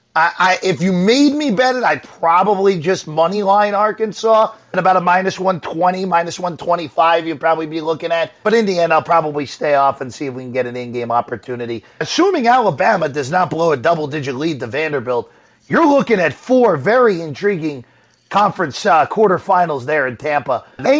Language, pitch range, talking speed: English, 155-215 Hz, 190 wpm